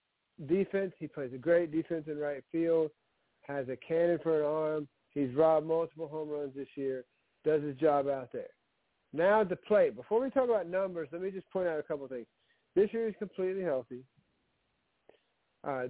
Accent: American